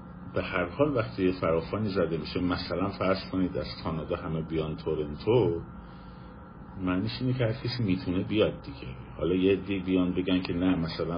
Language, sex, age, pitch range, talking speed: Persian, male, 50-69, 85-105 Hz, 165 wpm